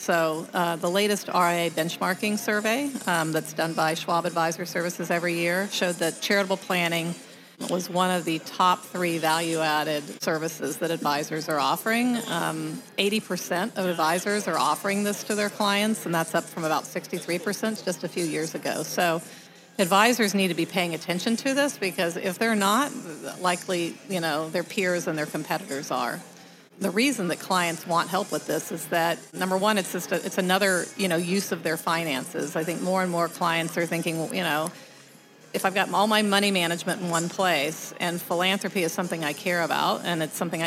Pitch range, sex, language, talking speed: 165-195 Hz, female, English, 190 wpm